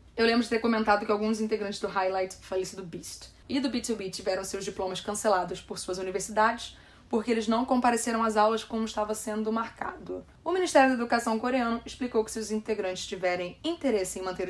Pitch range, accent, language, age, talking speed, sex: 195-245 Hz, Brazilian, Portuguese, 20-39, 195 wpm, female